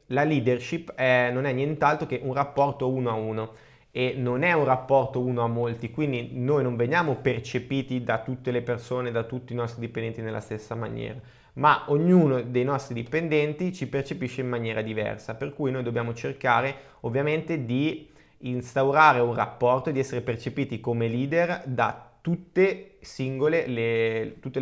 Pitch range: 115-135 Hz